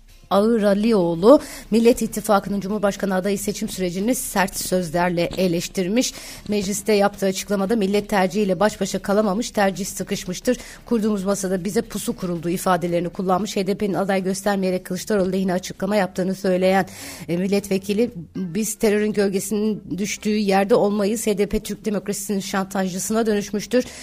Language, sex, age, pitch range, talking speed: Turkish, female, 30-49, 185-220 Hz, 120 wpm